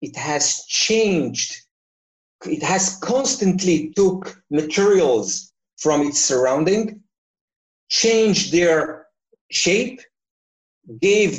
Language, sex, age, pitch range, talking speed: English, male, 50-69, 145-220 Hz, 80 wpm